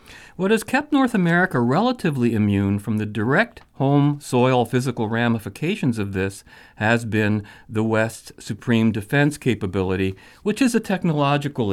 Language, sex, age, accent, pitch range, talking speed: English, male, 40-59, American, 100-140 Hz, 140 wpm